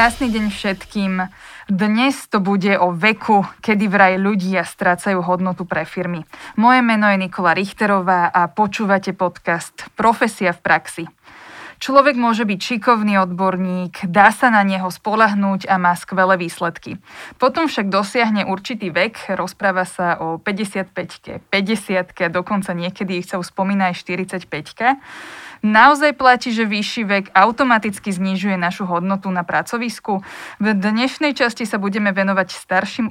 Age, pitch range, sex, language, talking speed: 20-39, 185-220 Hz, female, Slovak, 135 wpm